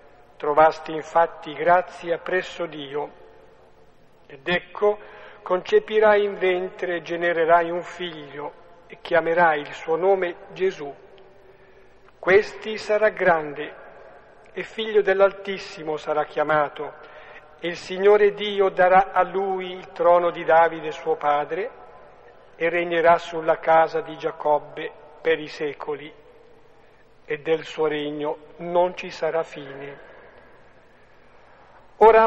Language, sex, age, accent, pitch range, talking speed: Italian, male, 50-69, native, 160-195 Hz, 110 wpm